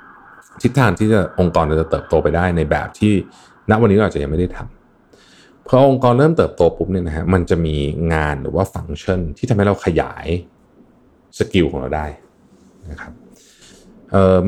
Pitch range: 80-110 Hz